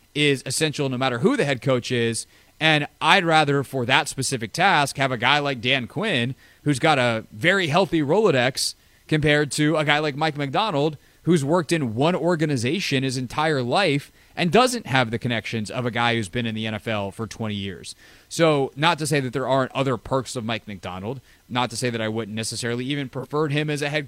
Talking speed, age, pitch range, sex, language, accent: 210 wpm, 30-49, 115-150 Hz, male, English, American